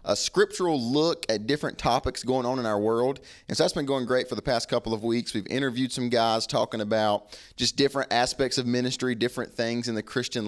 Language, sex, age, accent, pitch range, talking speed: English, male, 30-49, American, 110-140 Hz, 225 wpm